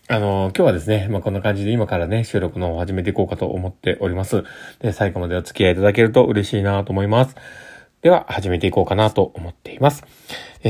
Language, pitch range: Japanese, 100-140 Hz